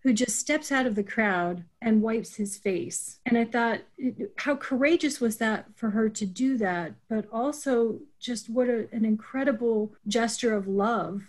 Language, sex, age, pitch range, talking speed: English, female, 30-49, 205-245 Hz, 170 wpm